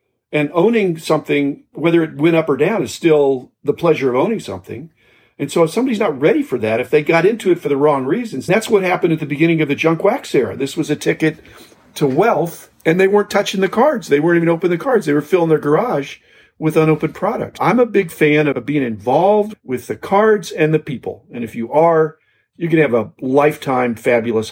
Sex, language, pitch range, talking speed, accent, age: male, English, 130-175 Hz, 230 wpm, American, 50-69